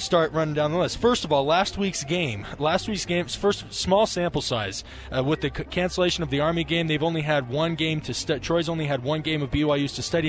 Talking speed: 245 wpm